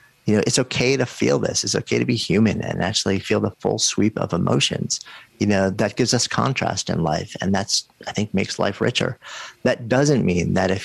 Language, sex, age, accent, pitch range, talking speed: English, male, 40-59, American, 95-120 Hz, 220 wpm